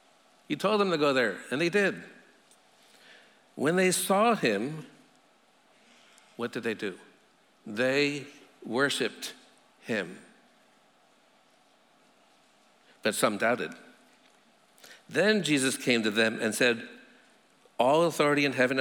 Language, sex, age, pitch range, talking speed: English, male, 60-79, 115-150 Hz, 110 wpm